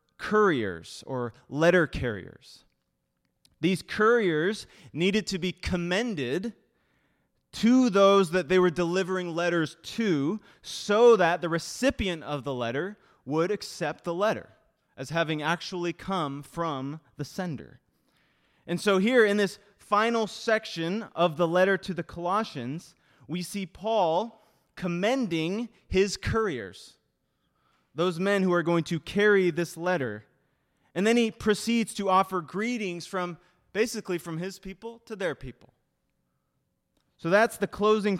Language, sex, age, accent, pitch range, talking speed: English, male, 20-39, American, 155-205 Hz, 130 wpm